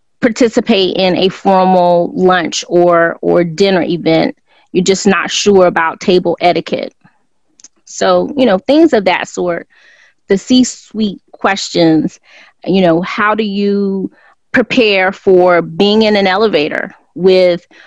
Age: 30-49